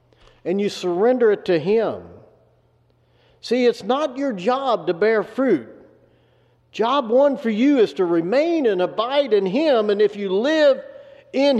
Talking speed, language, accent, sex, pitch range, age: 155 wpm, English, American, male, 175-255 Hz, 50-69